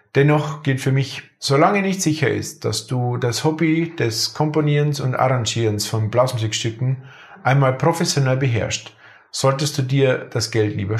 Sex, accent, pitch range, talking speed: male, German, 115-145 Hz, 145 wpm